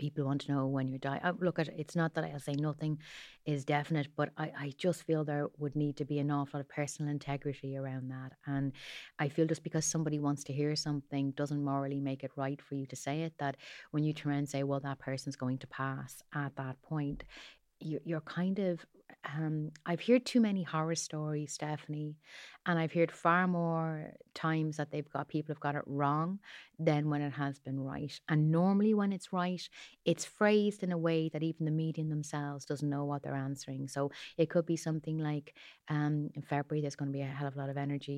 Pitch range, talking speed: 140-160 Hz, 225 wpm